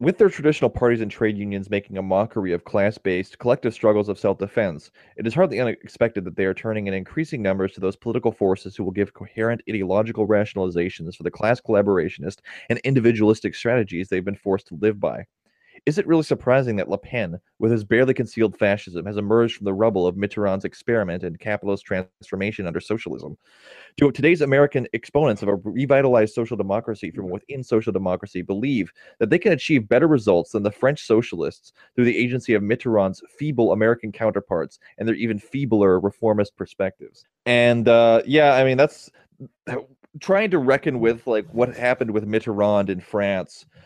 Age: 30-49